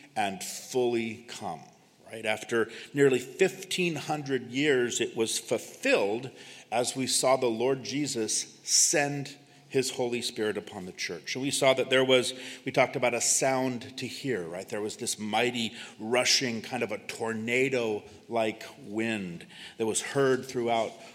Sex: male